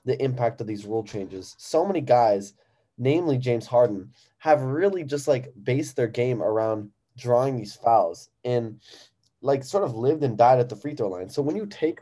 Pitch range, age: 110-135 Hz, 10-29